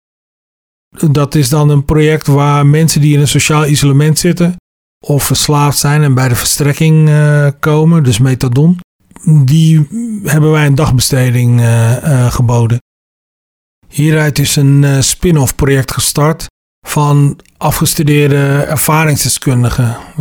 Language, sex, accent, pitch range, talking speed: Dutch, male, Dutch, 120-145 Hz, 115 wpm